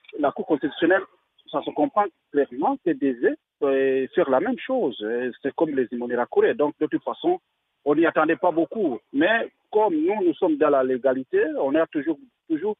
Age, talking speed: 50-69, 190 wpm